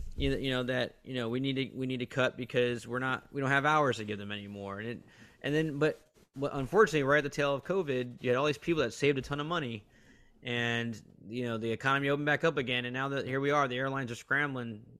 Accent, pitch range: American, 115-140 Hz